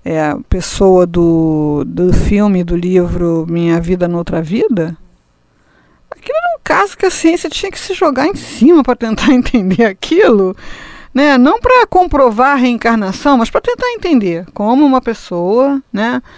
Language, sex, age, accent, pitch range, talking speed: Portuguese, female, 50-69, Brazilian, 185-260 Hz, 160 wpm